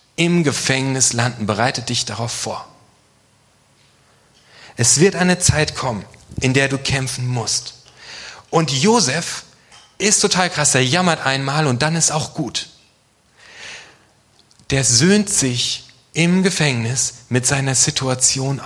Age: 40-59